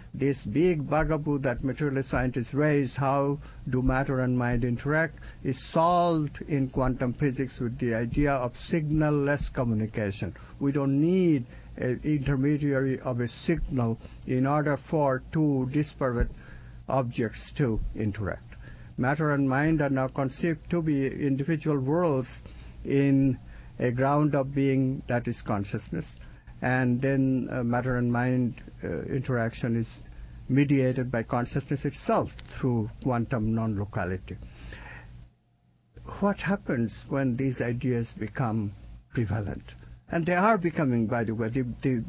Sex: male